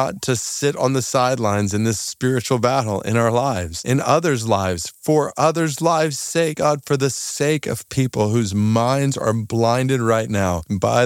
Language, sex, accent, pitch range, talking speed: English, male, American, 105-145 Hz, 175 wpm